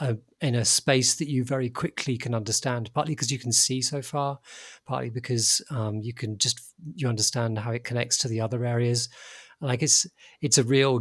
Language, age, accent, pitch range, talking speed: English, 40-59, British, 115-135 Hz, 200 wpm